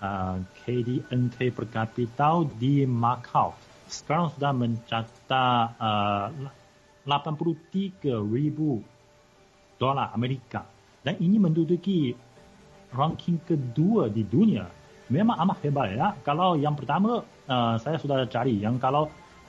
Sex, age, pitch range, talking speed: male, 30-49, 115-145 Hz, 105 wpm